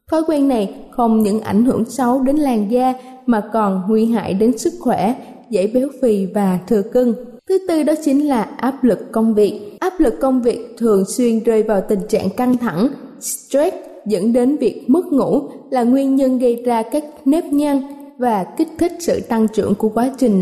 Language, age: Vietnamese, 20-39